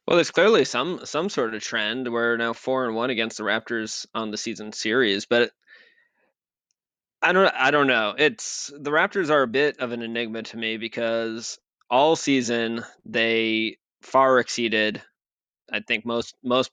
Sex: male